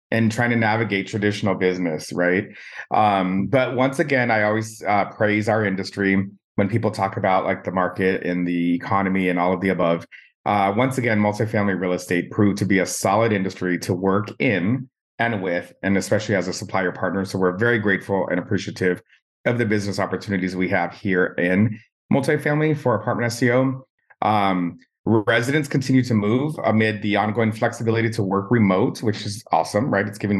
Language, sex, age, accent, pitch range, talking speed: English, male, 30-49, American, 95-120 Hz, 180 wpm